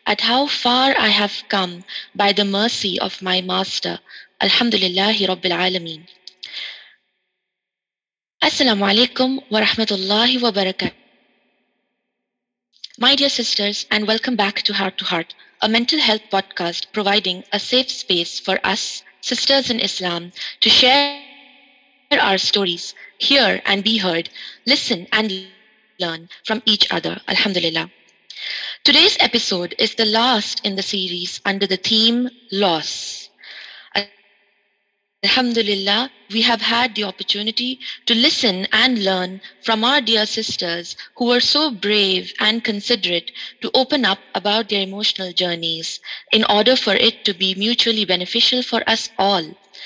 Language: English